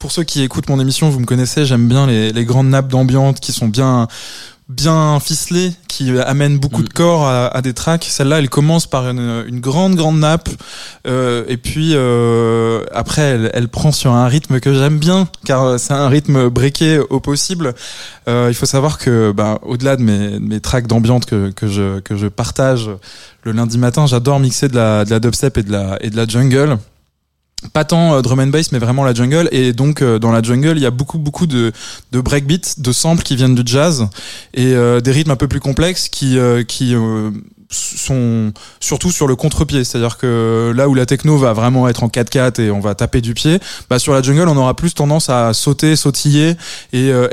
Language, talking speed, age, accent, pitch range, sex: French, 225 wpm, 20-39, French, 120-150 Hz, male